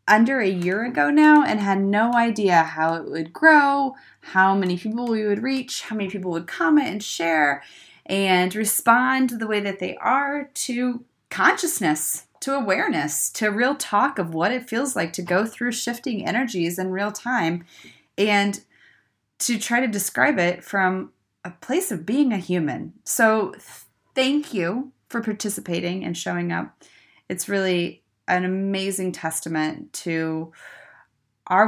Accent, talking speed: American, 155 wpm